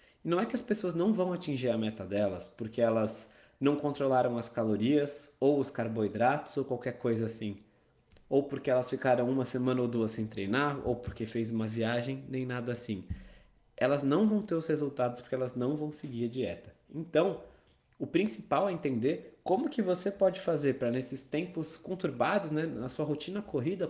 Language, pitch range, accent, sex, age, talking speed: Portuguese, 125-180 Hz, Brazilian, male, 20-39, 185 wpm